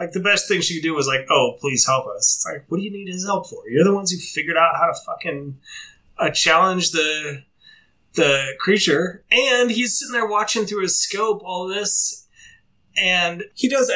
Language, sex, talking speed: English, male, 210 wpm